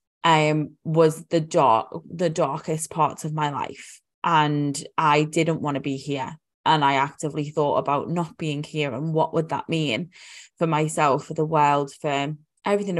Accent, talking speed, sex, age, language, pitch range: British, 170 wpm, female, 20-39, English, 155-185 Hz